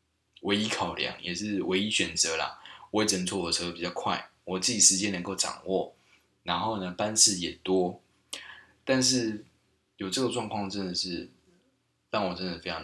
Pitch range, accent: 90-110 Hz, native